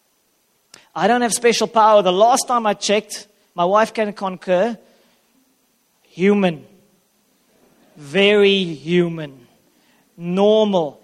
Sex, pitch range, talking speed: male, 185-230 Hz, 100 wpm